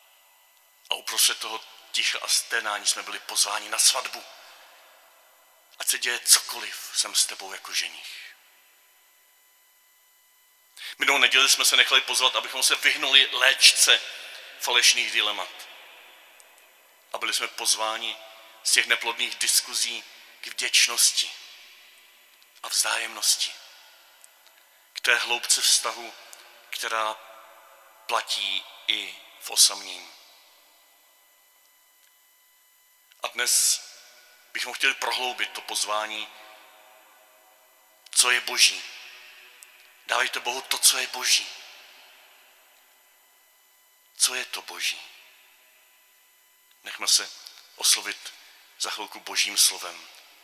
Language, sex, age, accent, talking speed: Czech, male, 40-59, native, 95 wpm